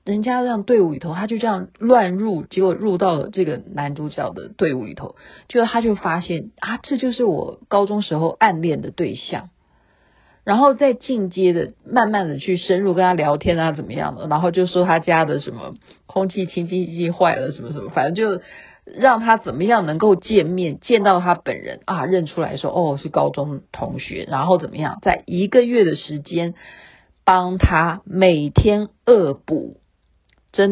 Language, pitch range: Chinese, 160-215 Hz